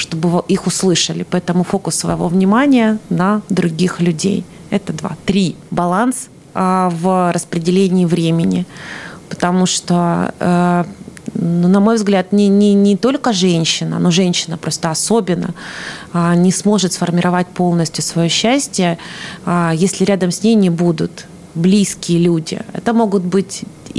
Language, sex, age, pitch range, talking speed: Russian, female, 30-49, 170-200 Hz, 120 wpm